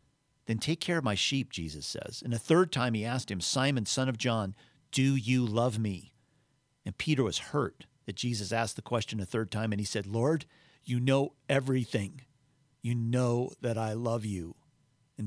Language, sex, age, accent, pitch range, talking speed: English, male, 40-59, American, 110-140 Hz, 195 wpm